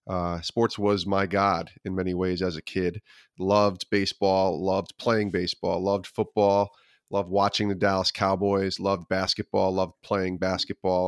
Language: English